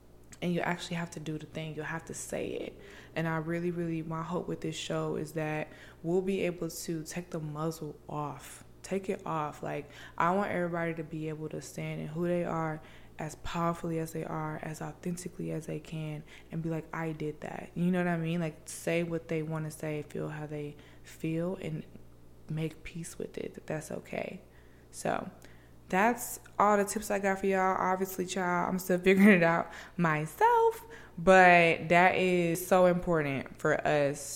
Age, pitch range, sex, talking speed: 20-39, 150-180 Hz, female, 195 wpm